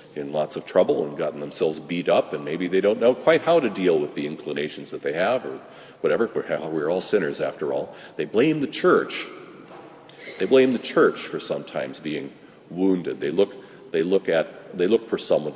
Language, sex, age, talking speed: English, male, 40-59, 205 wpm